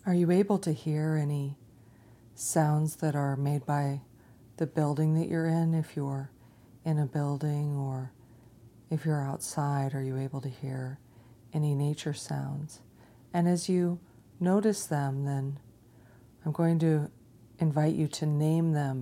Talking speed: 150 wpm